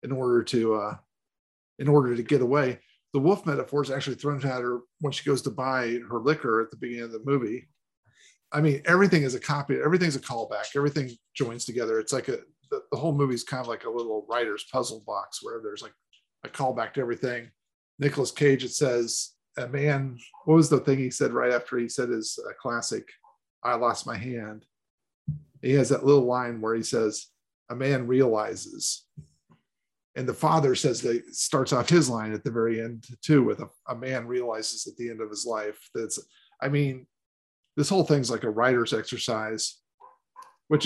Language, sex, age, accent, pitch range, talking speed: English, male, 40-59, American, 115-145 Hz, 200 wpm